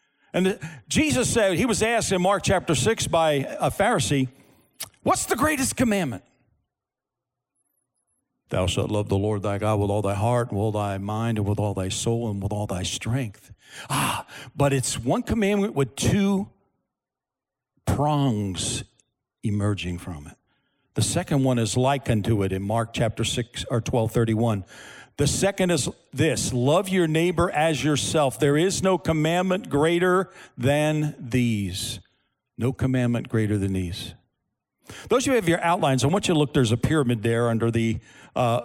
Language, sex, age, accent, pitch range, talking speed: English, male, 50-69, American, 110-150 Hz, 165 wpm